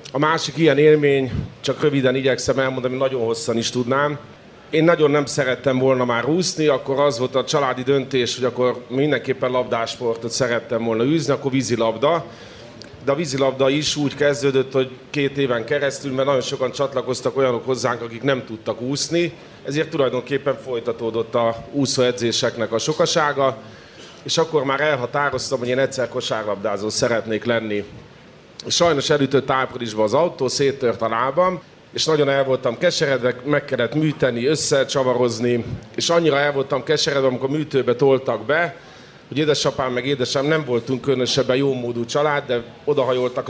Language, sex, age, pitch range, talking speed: Hungarian, male, 30-49, 120-145 Hz, 150 wpm